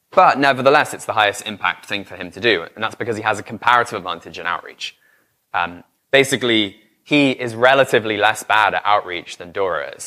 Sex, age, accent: male, 20-39, British